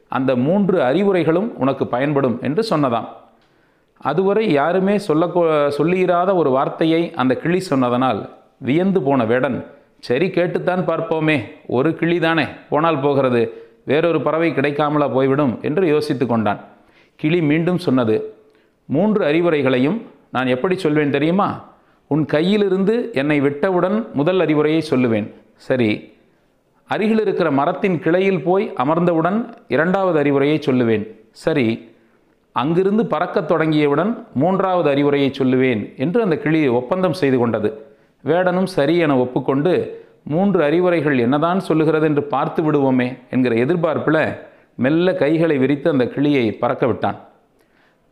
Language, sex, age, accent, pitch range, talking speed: Tamil, male, 40-59, native, 135-180 Hz, 115 wpm